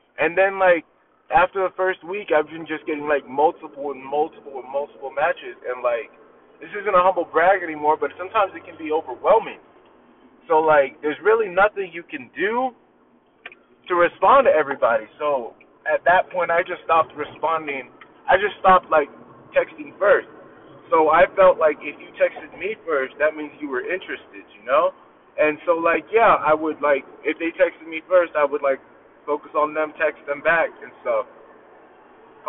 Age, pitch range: 20-39, 155-215 Hz